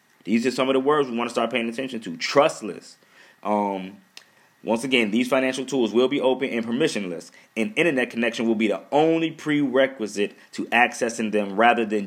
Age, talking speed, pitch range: 20-39, 190 wpm, 105-130 Hz